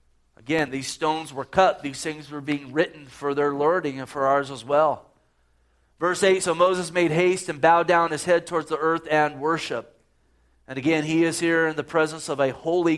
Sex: male